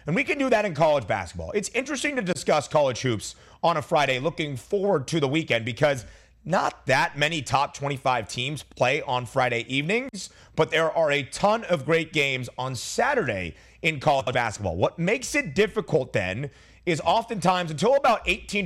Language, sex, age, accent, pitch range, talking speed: English, male, 30-49, American, 130-180 Hz, 180 wpm